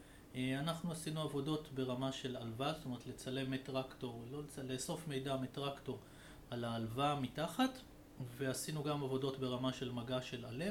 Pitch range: 130-150 Hz